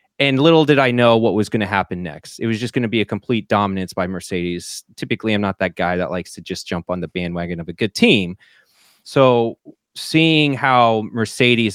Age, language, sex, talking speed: 20-39, English, male, 220 wpm